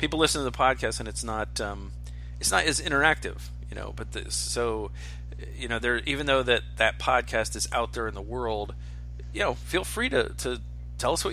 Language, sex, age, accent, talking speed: English, male, 40-59, American, 215 wpm